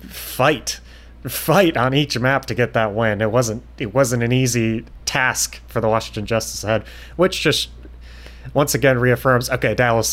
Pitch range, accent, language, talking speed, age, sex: 100-135 Hz, American, English, 165 wpm, 30-49, male